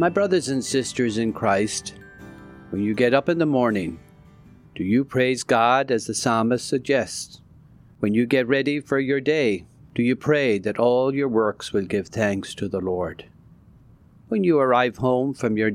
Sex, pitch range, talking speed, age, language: male, 105-140 Hz, 180 wpm, 40-59, English